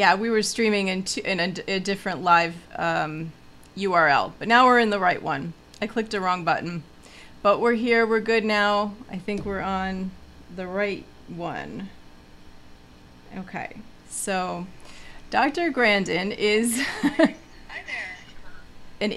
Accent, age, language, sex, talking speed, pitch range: American, 30-49, English, female, 135 wpm, 180-220 Hz